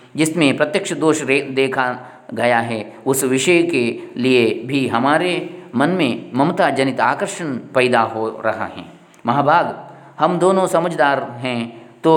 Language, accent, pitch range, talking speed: Kannada, native, 120-150 Hz, 135 wpm